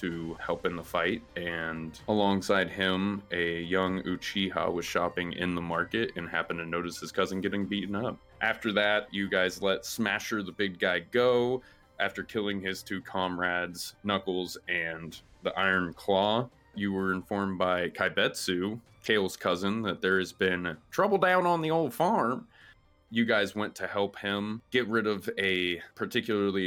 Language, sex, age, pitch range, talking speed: English, male, 20-39, 90-105 Hz, 165 wpm